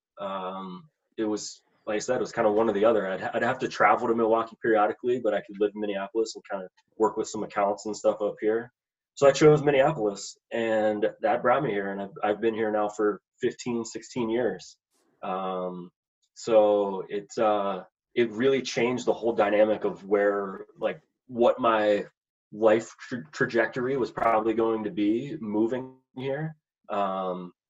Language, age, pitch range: English, 20-39, 105-120 Hz